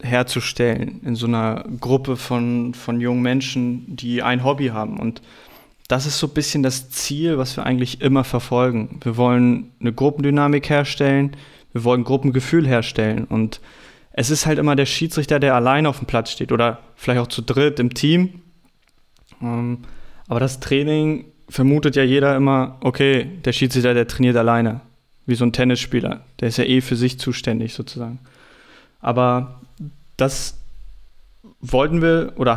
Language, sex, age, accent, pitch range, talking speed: German, male, 20-39, German, 125-145 Hz, 155 wpm